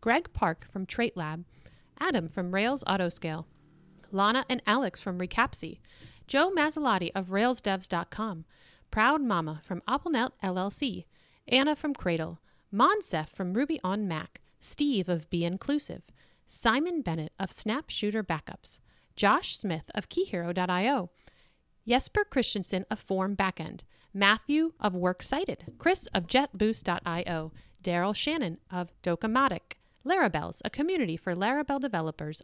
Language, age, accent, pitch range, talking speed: English, 40-59, American, 175-255 Hz, 120 wpm